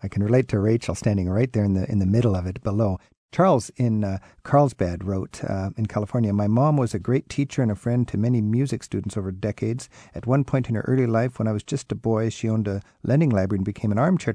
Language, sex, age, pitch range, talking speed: English, male, 50-69, 100-120 Hz, 255 wpm